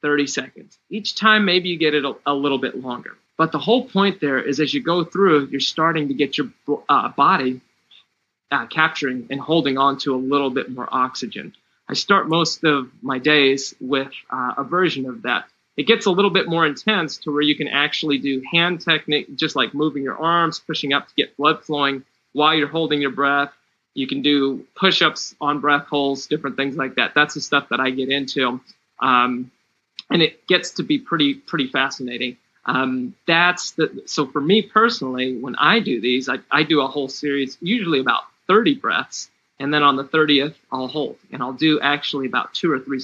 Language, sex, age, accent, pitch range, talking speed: English, male, 30-49, American, 135-160 Hz, 205 wpm